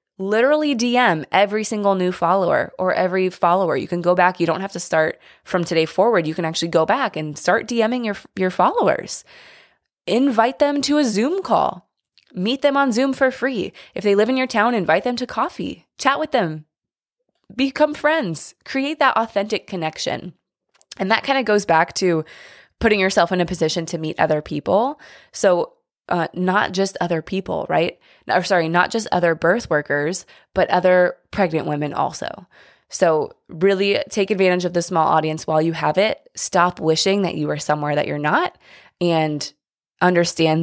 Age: 20-39